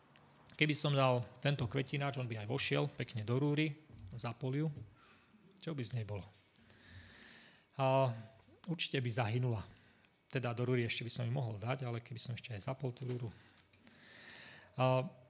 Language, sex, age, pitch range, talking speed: Slovak, male, 30-49, 115-135 Hz, 155 wpm